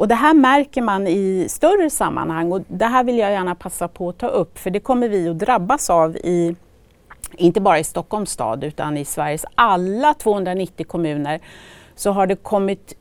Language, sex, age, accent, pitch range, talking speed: Swedish, female, 40-59, native, 170-235 Hz, 195 wpm